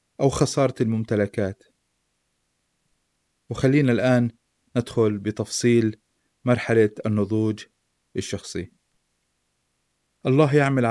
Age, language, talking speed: 30-49, Arabic, 65 wpm